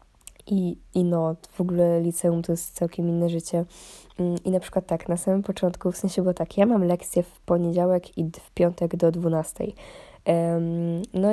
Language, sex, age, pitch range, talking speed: Polish, female, 20-39, 170-185 Hz, 175 wpm